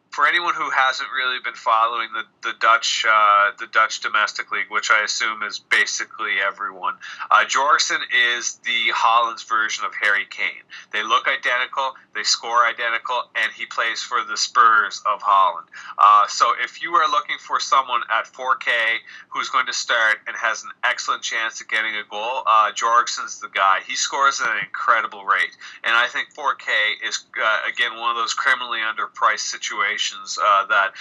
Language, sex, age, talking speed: English, male, 30-49, 180 wpm